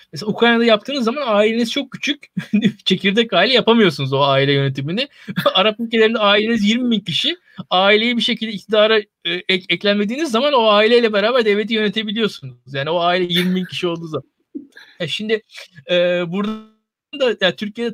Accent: native